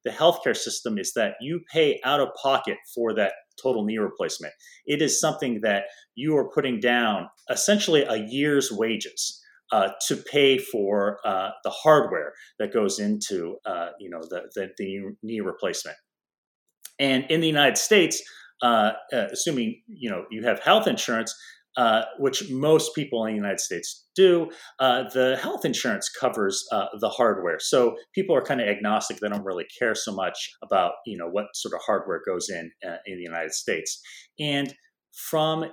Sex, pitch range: male, 120-190 Hz